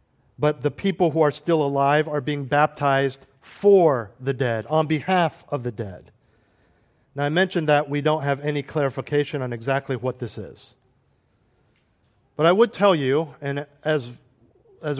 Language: English